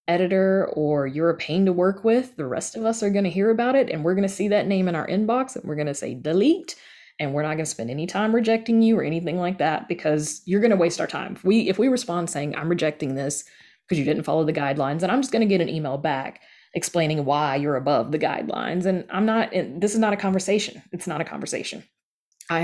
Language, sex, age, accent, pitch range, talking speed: English, female, 20-39, American, 145-195 Hz, 255 wpm